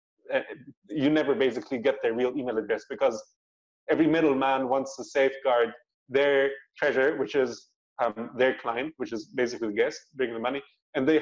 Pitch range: 125-150 Hz